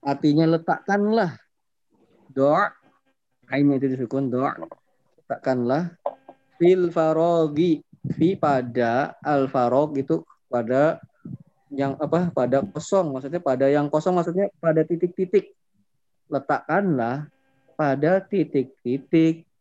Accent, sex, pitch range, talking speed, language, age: native, male, 130-170 Hz, 90 wpm, Indonesian, 20-39